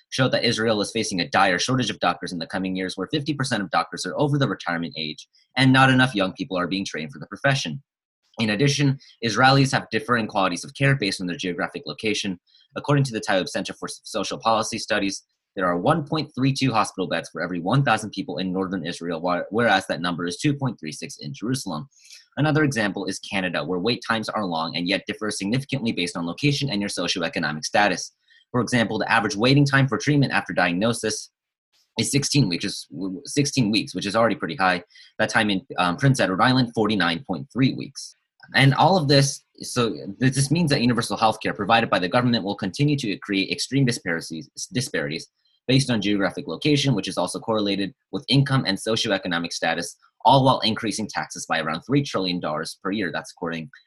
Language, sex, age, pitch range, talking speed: English, male, 30-49, 95-135 Hz, 190 wpm